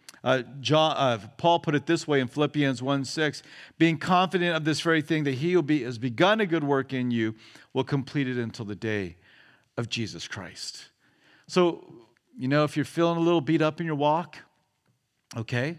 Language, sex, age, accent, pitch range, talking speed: English, male, 50-69, American, 135-170 Hz, 195 wpm